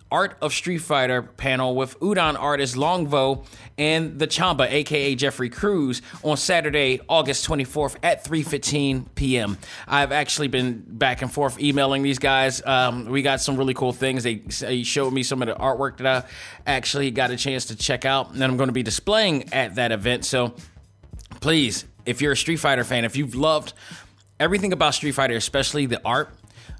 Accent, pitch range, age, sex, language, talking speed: American, 120-145 Hz, 30-49, male, English, 185 wpm